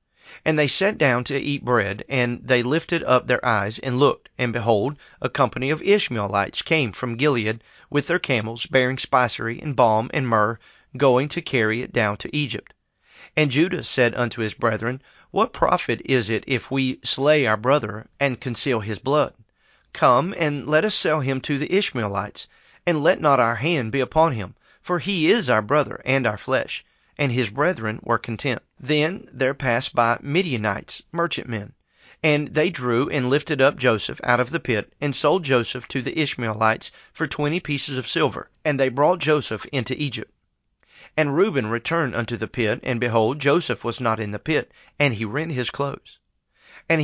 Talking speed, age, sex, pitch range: 180 wpm, 40-59, male, 115-150 Hz